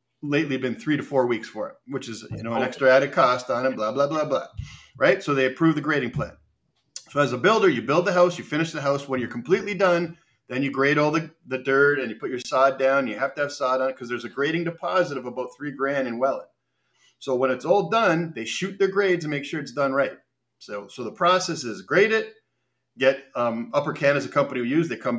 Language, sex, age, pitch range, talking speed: English, male, 40-59, 130-170 Hz, 260 wpm